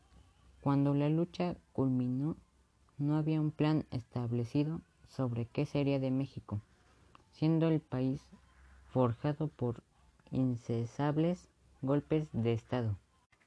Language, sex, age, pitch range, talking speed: Spanish, female, 20-39, 115-145 Hz, 105 wpm